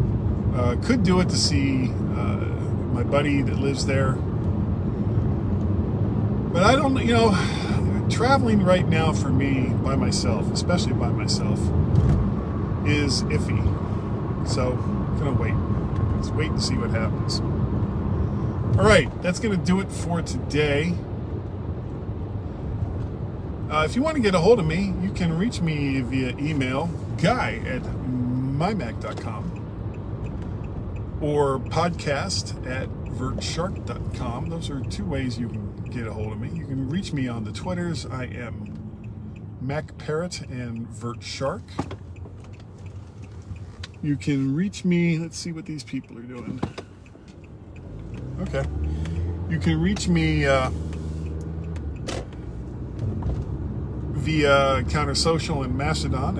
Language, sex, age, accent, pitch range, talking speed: English, male, 40-59, American, 100-130 Hz, 125 wpm